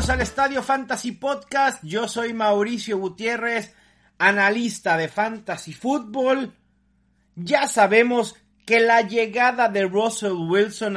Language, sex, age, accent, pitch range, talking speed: English, male, 40-59, Mexican, 175-235 Hz, 110 wpm